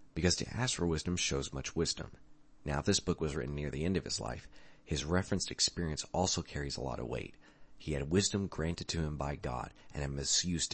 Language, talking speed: English, 225 wpm